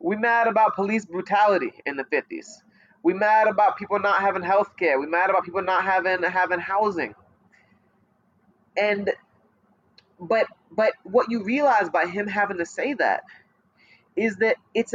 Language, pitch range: English, 185-250 Hz